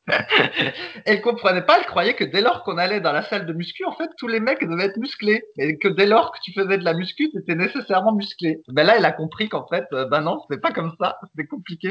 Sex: male